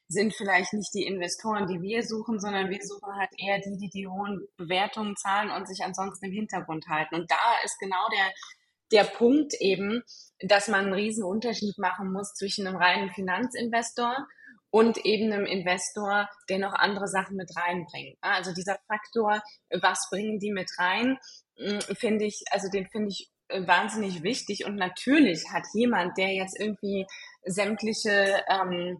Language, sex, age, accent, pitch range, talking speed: German, female, 20-39, German, 185-215 Hz, 160 wpm